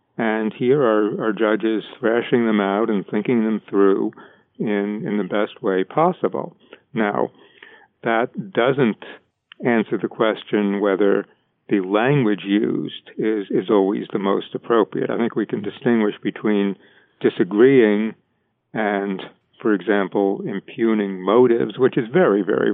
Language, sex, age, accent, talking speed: English, male, 60-79, American, 130 wpm